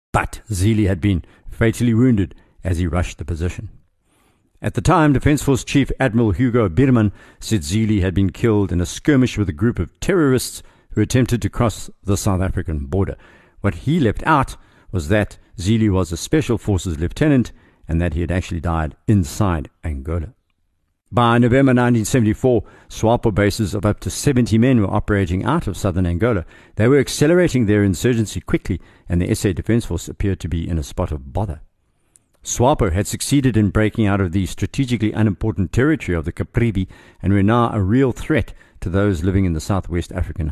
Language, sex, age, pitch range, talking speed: English, male, 60-79, 90-115 Hz, 180 wpm